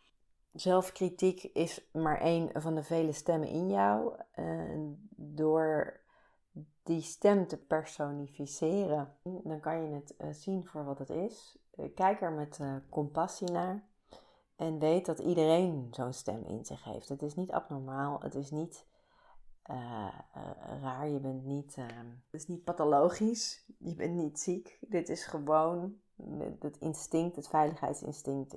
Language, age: Dutch, 40-59